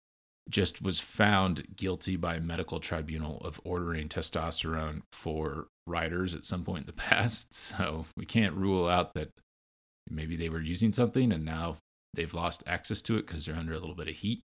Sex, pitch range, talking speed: male, 80-105 Hz, 185 wpm